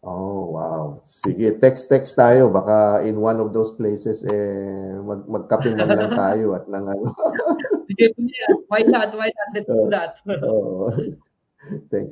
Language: Filipino